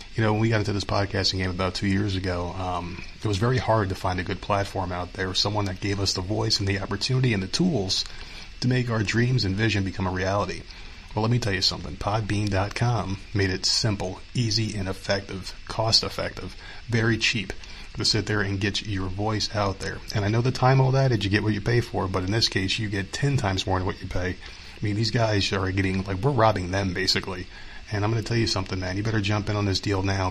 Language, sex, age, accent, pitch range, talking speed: English, male, 30-49, American, 95-105 Hz, 250 wpm